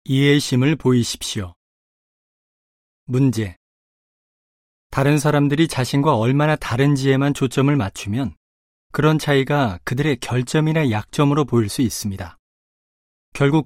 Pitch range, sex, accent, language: 100-150 Hz, male, native, Korean